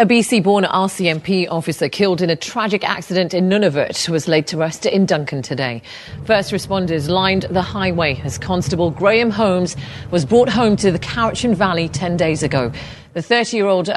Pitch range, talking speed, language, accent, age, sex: 165-205 Hz, 170 wpm, English, British, 40-59, female